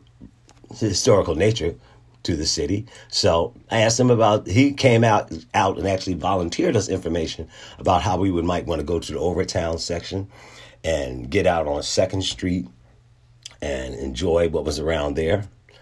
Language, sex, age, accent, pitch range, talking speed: English, male, 50-69, American, 95-120 Hz, 165 wpm